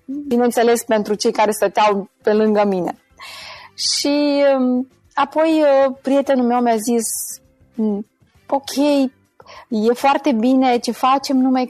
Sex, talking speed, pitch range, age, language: female, 110 wpm, 195-250 Hz, 20-39, Romanian